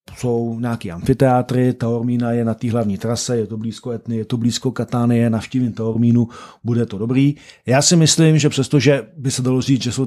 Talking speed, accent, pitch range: 210 wpm, native, 110-125 Hz